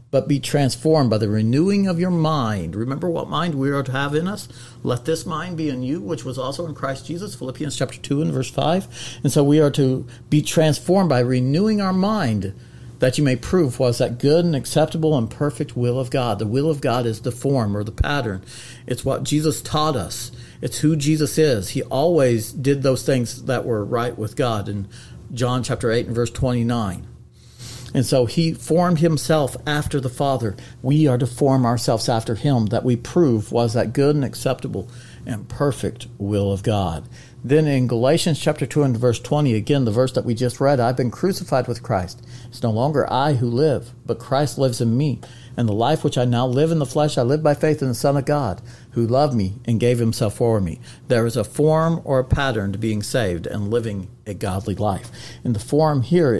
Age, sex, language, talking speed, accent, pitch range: 50-69, male, English, 215 wpm, American, 120-150 Hz